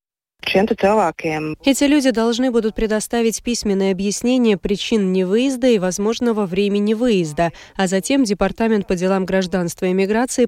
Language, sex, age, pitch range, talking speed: Russian, female, 20-39, 180-225 Hz, 120 wpm